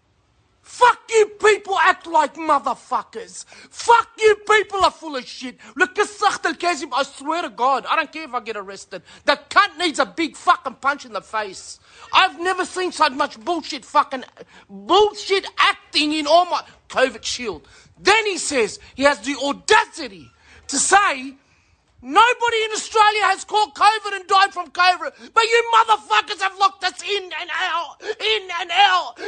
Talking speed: 165 wpm